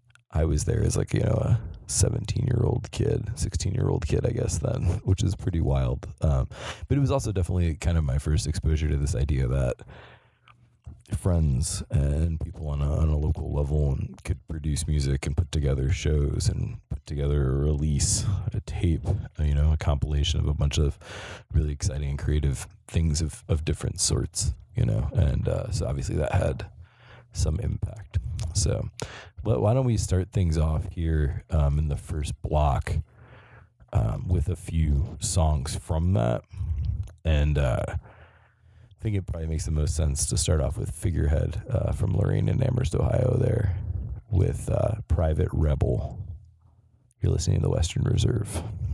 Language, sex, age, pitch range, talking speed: English, male, 30-49, 75-110 Hz, 175 wpm